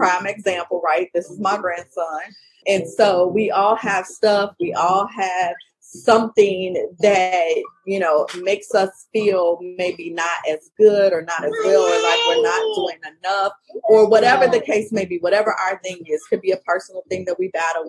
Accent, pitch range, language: American, 180-225 Hz, English